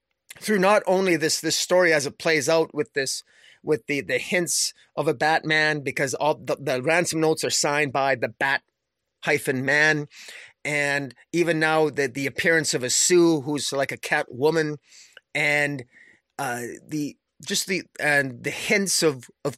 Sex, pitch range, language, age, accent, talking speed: male, 140-165 Hz, English, 30-49, American, 170 wpm